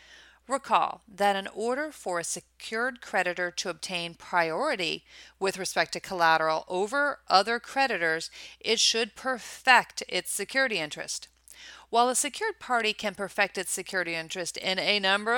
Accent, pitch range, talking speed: American, 175-255 Hz, 140 wpm